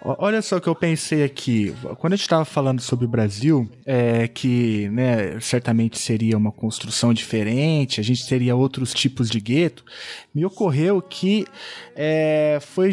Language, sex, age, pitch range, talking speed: Portuguese, male, 20-39, 130-175 Hz, 155 wpm